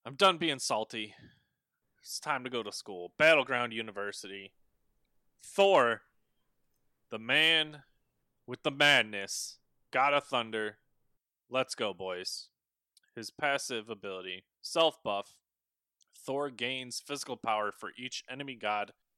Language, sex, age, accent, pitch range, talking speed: English, male, 20-39, American, 100-130 Hz, 115 wpm